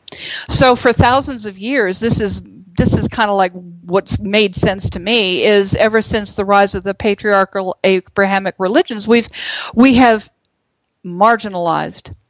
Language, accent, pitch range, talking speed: English, American, 190-230 Hz, 150 wpm